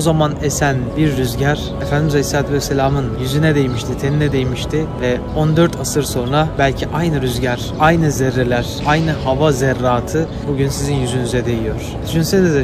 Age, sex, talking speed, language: 30-49, male, 140 wpm, Turkish